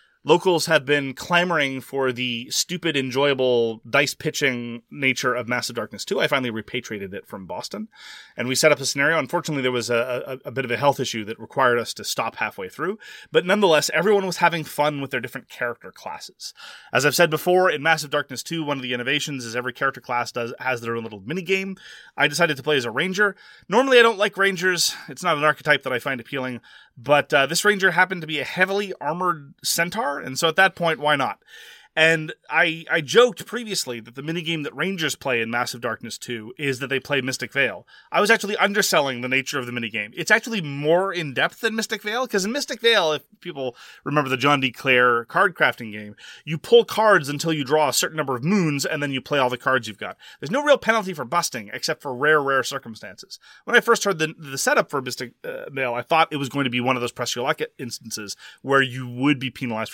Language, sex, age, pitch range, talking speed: English, male, 30-49, 125-175 Hz, 230 wpm